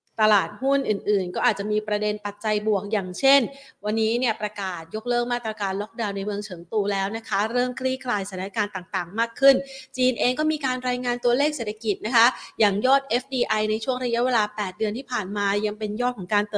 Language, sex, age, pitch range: Thai, female, 30-49, 200-240 Hz